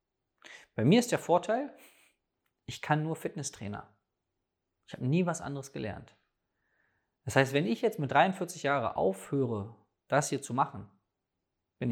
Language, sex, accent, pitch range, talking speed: German, male, German, 105-155 Hz, 145 wpm